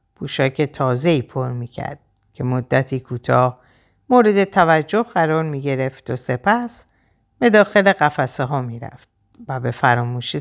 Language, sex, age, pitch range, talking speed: Persian, female, 50-69, 125-185 Hz, 120 wpm